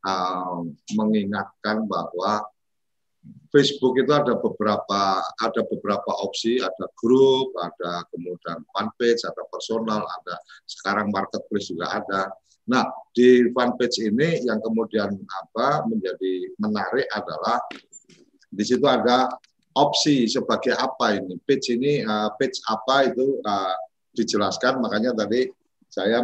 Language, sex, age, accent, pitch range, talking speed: Indonesian, male, 50-69, native, 105-130 Hz, 120 wpm